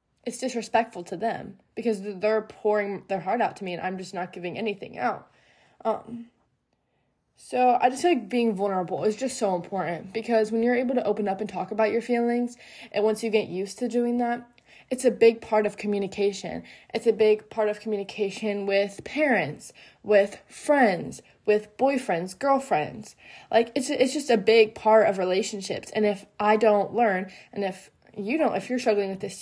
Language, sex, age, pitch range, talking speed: English, female, 20-39, 195-230 Hz, 190 wpm